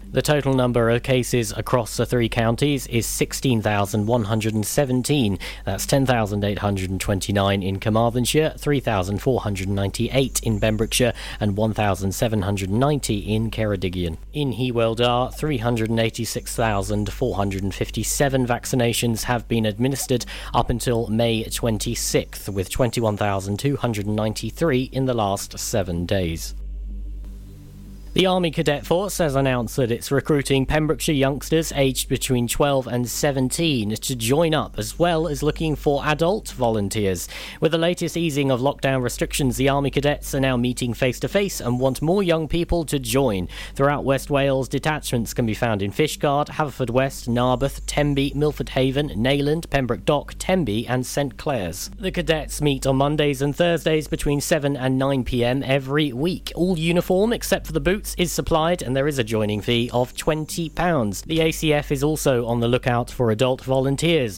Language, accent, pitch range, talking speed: English, British, 110-145 Hz, 140 wpm